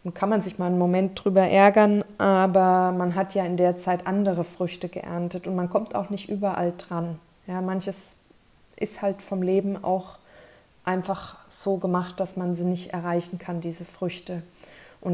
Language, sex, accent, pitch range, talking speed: German, female, German, 175-190 Hz, 175 wpm